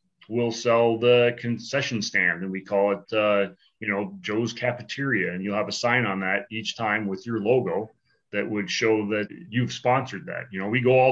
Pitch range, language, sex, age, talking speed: 105-130 Hz, English, male, 30-49, 205 wpm